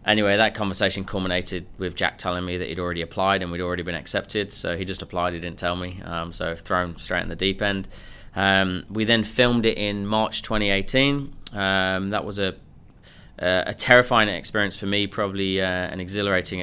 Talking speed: 195 wpm